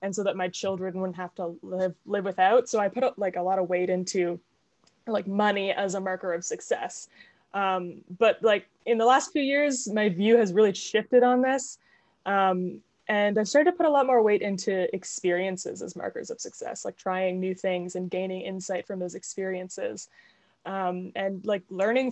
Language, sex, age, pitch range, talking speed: English, female, 20-39, 185-235 Hz, 195 wpm